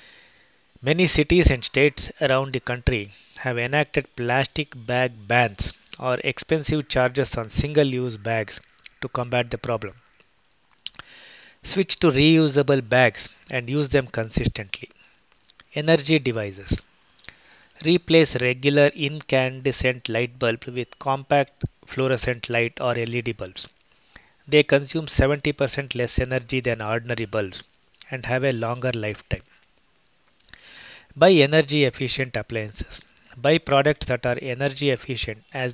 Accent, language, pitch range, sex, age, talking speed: Indian, English, 120-145 Hz, male, 20-39, 115 wpm